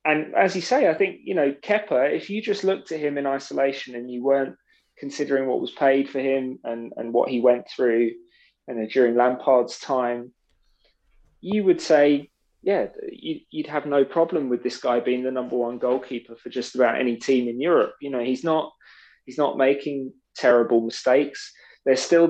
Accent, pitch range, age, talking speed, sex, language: British, 120-155 Hz, 20-39, 190 wpm, male, English